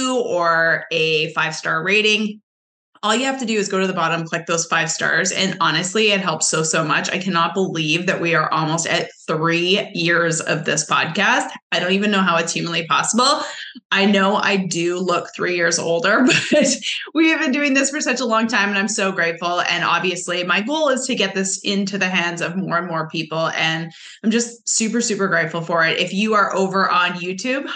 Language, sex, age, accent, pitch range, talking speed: English, female, 20-39, American, 170-220 Hz, 215 wpm